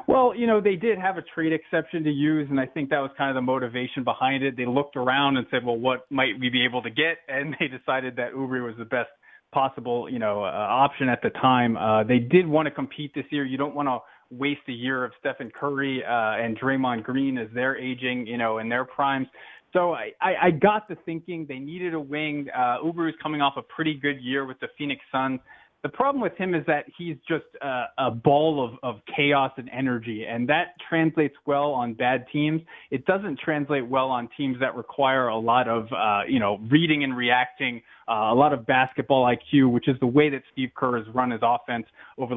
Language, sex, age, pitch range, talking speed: English, male, 30-49, 125-145 Hz, 230 wpm